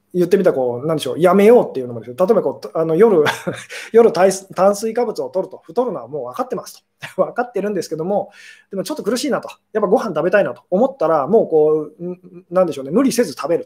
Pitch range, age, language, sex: 145-205 Hz, 20-39, Japanese, male